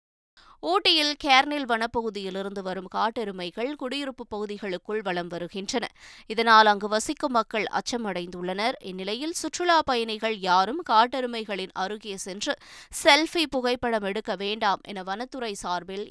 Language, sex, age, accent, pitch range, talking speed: Tamil, female, 20-39, native, 195-250 Hz, 105 wpm